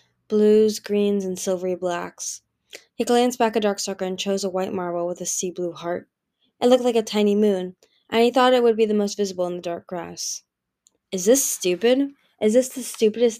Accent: American